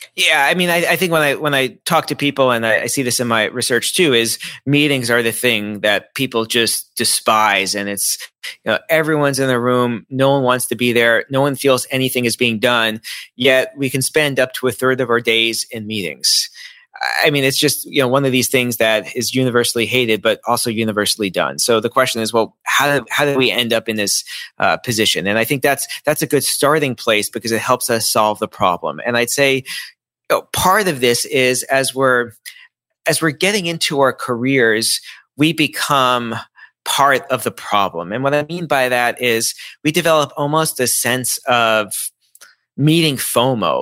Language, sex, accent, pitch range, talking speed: English, male, American, 115-140 Hz, 210 wpm